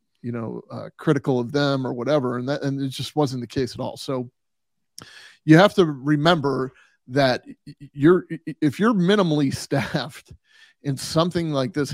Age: 30-49